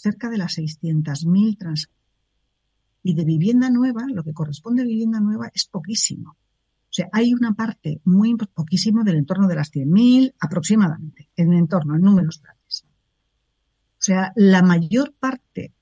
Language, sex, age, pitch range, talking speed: Spanish, female, 40-59, 155-220 Hz, 150 wpm